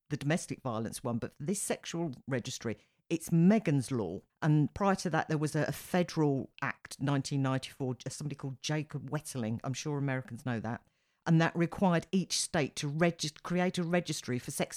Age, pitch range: 50-69, 135-165 Hz